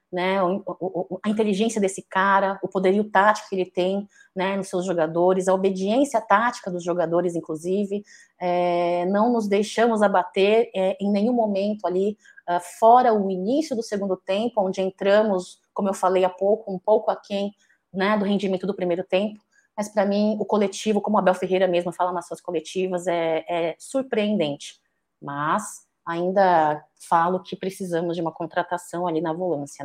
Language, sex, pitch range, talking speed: Portuguese, female, 180-215 Hz, 165 wpm